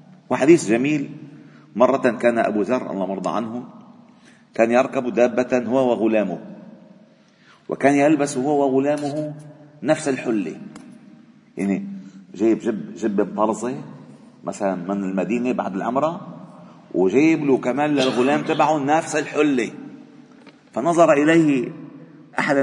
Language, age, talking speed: Arabic, 50-69, 105 wpm